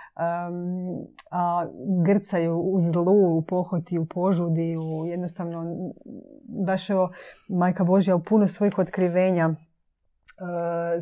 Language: Croatian